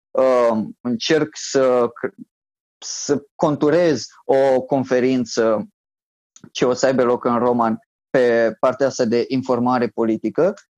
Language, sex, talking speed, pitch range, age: Romanian, male, 110 wpm, 135-215 Hz, 20-39